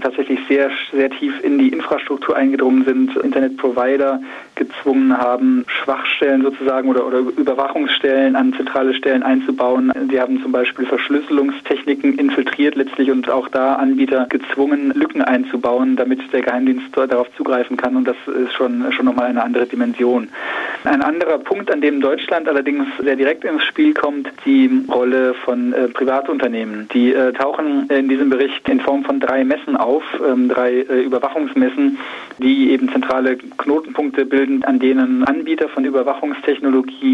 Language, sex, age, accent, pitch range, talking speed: German, male, 20-39, German, 130-150 Hz, 150 wpm